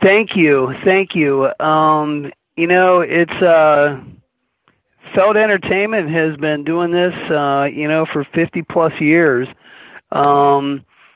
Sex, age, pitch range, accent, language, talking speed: male, 40-59, 135-160 Hz, American, English, 125 wpm